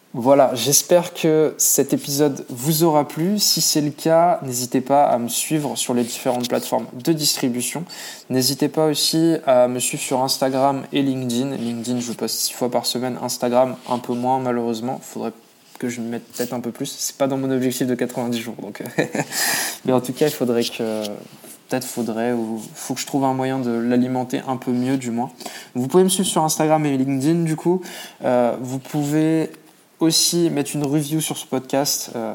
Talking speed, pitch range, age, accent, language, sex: 200 wpm, 125-140 Hz, 20-39, French, French, male